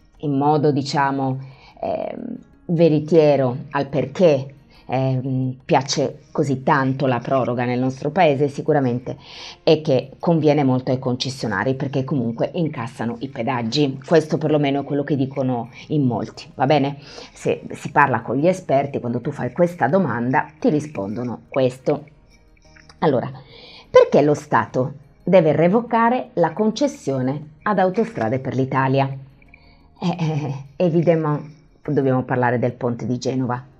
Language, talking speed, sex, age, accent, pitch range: Italian, 125 wpm, female, 30-49, native, 130-155 Hz